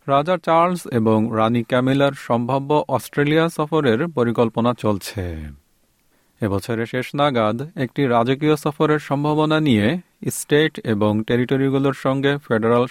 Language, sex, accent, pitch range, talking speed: Bengali, male, native, 115-155 Hz, 100 wpm